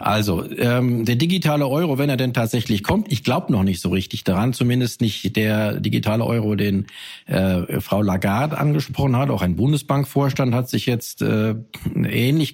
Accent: German